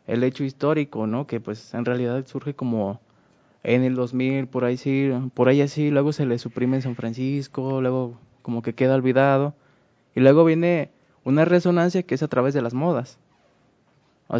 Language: Spanish